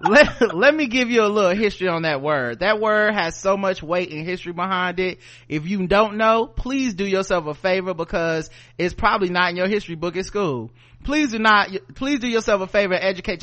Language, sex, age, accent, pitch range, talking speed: English, male, 30-49, American, 150-200 Hz, 220 wpm